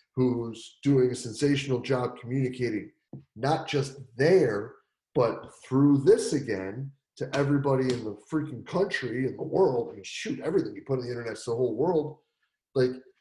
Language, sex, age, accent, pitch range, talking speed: English, male, 30-49, American, 125-150 Hz, 165 wpm